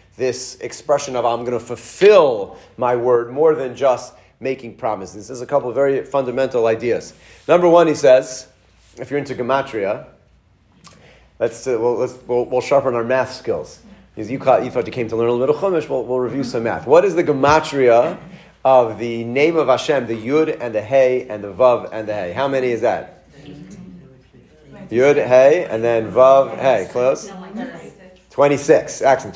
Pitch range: 125-160 Hz